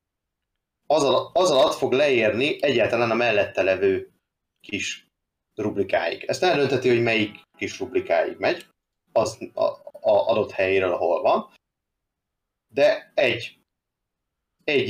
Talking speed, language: 110 wpm, Hungarian